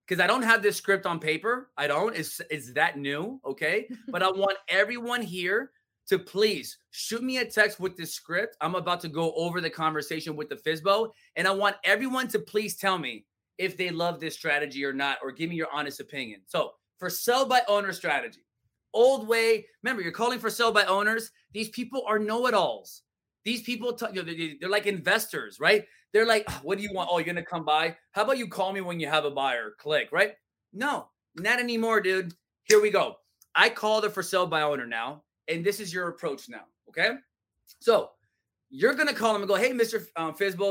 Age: 30-49